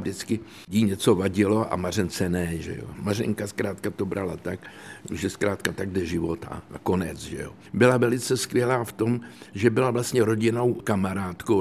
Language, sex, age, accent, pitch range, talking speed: Czech, male, 60-79, native, 90-110 Hz, 175 wpm